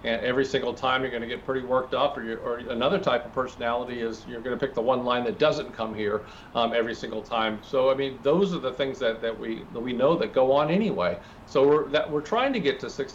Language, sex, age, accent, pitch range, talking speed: English, male, 50-69, American, 115-140 Hz, 275 wpm